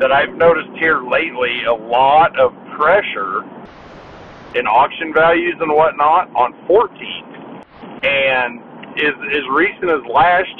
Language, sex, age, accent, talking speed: English, male, 50-69, American, 125 wpm